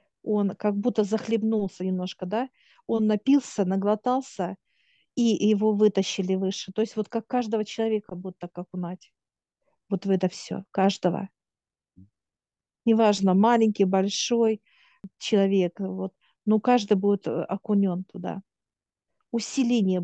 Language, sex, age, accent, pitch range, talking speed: Russian, female, 50-69, native, 190-220 Hz, 110 wpm